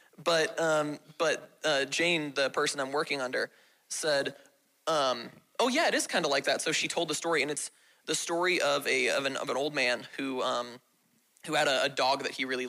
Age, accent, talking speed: 20-39, American, 220 wpm